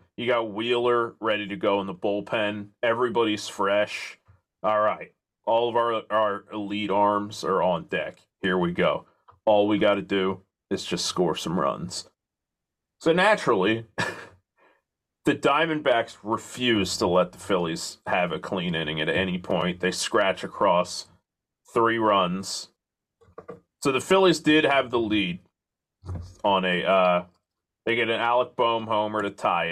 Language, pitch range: English, 95-115 Hz